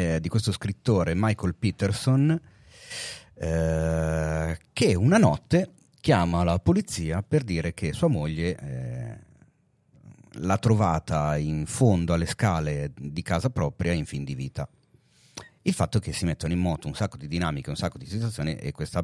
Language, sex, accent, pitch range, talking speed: Italian, male, native, 85-120 Hz, 155 wpm